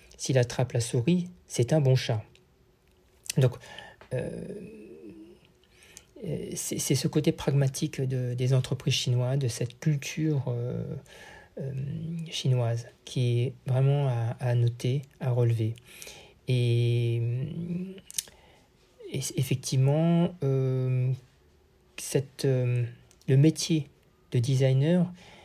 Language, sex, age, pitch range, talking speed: French, male, 50-69, 125-165 Hz, 90 wpm